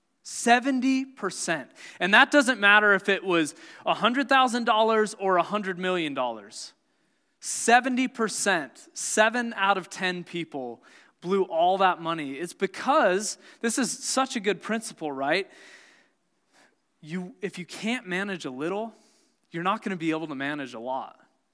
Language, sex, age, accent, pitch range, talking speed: English, male, 20-39, American, 175-245 Hz, 130 wpm